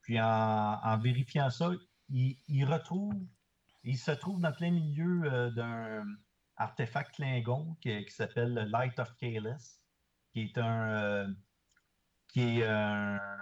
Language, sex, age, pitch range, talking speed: English, male, 50-69, 110-140 Hz, 145 wpm